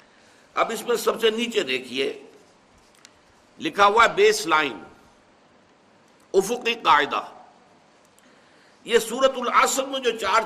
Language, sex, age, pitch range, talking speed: Urdu, male, 60-79, 180-265 Hz, 115 wpm